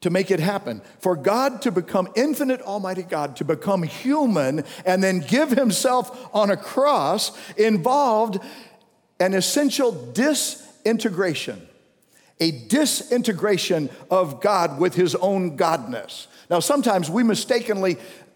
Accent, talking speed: American, 120 wpm